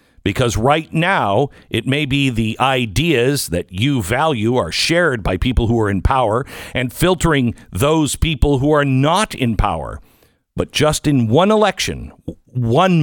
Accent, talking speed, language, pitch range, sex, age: American, 155 wpm, English, 105-150 Hz, male, 50-69